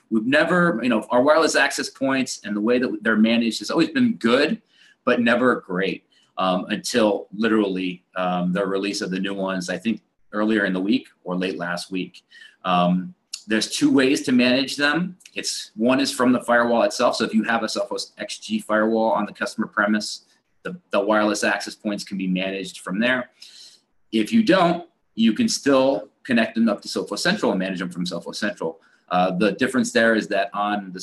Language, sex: English, male